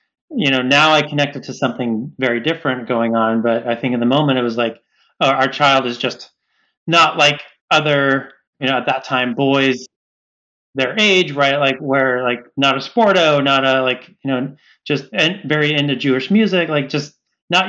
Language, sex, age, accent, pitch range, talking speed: English, male, 30-49, American, 125-150 Hz, 190 wpm